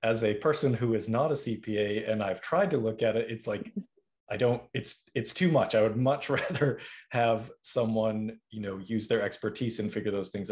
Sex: male